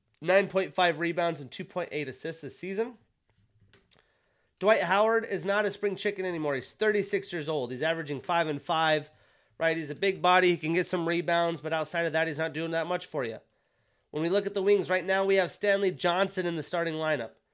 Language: English